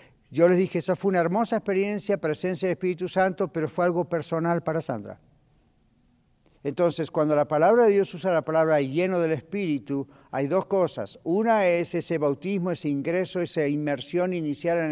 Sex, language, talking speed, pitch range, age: male, Spanish, 175 wpm, 155-185 Hz, 50-69